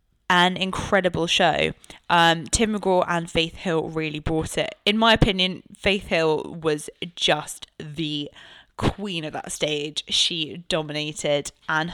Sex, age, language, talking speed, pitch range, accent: female, 10-29, English, 135 wpm, 165-215 Hz, British